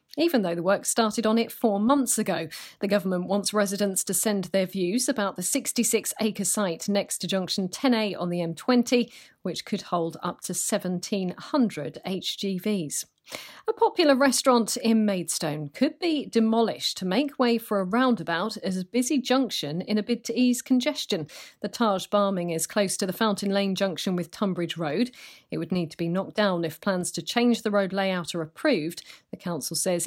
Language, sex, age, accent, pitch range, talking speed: English, female, 40-59, British, 185-240 Hz, 185 wpm